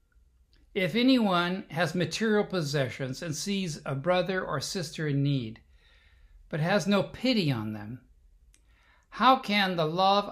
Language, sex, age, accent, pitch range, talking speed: English, male, 60-79, American, 125-180 Hz, 135 wpm